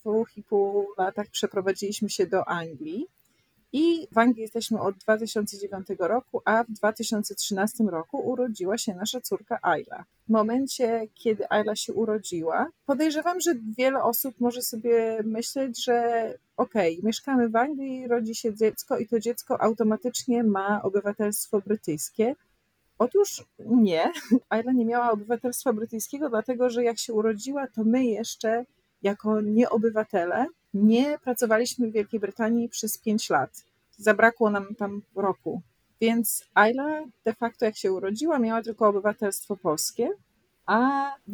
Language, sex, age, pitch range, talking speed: Polish, female, 40-59, 200-235 Hz, 135 wpm